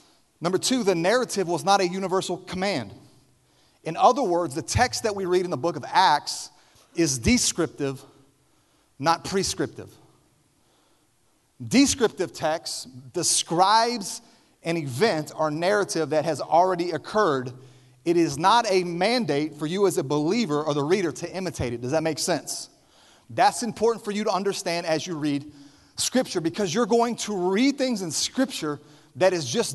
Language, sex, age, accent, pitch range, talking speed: English, male, 30-49, American, 155-205 Hz, 155 wpm